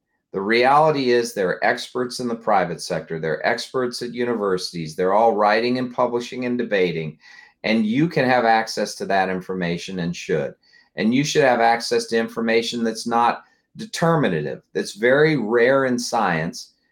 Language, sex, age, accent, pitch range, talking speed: English, male, 50-69, American, 95-125 Hz, 165 wpm